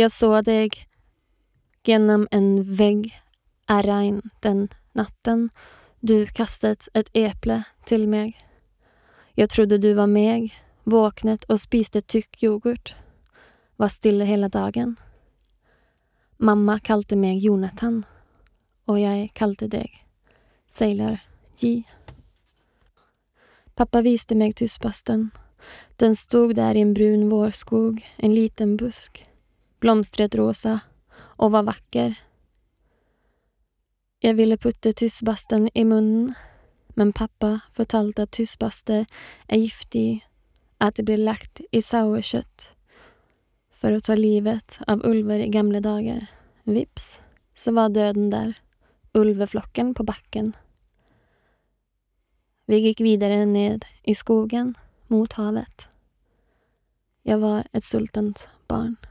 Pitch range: 210-225 Hz